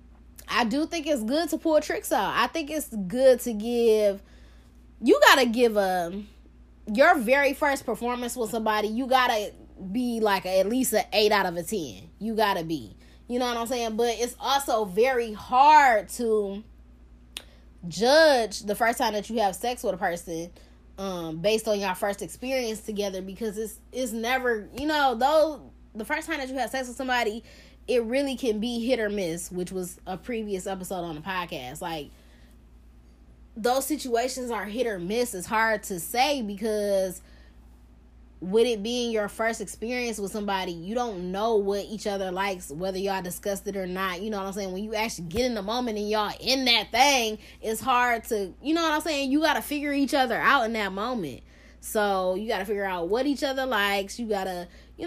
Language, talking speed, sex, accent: English, 205 wpm, female, American